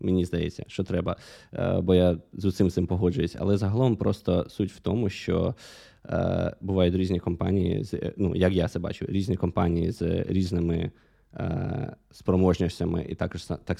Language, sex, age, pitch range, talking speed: Ukrainian, male, 20-39, 90-115 Hz, 155 wpm